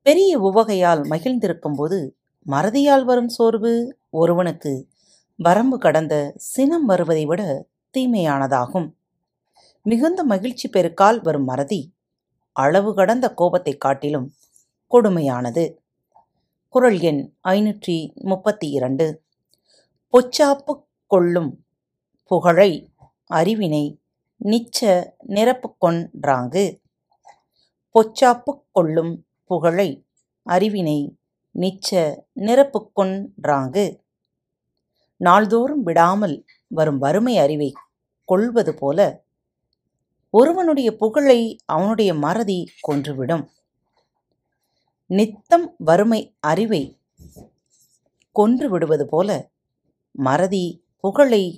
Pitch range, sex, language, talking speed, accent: 155-230 Hz, female, Tamil, 70 wpm, native